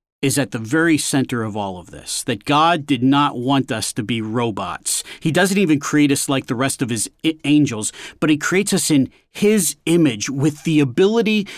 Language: English